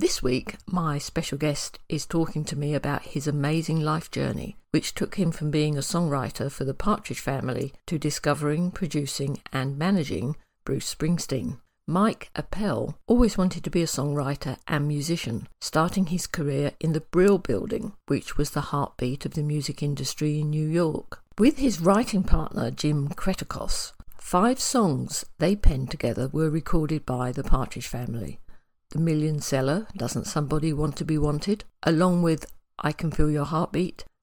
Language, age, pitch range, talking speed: English, 50-69, 140-175 Hz, 165 wpm